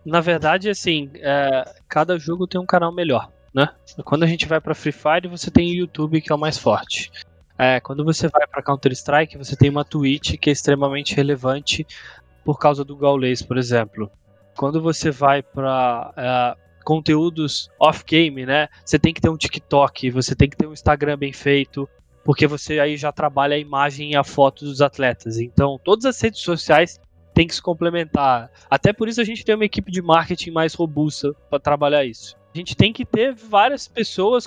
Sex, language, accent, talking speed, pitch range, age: male, Portuguese, Brazilian, 190 wpm, 140-175 Hz, 20-39